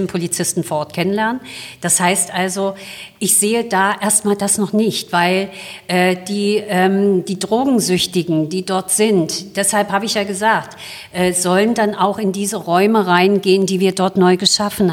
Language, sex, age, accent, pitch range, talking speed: German, female, 50-69, German, 180-210 Hz, 165 wpm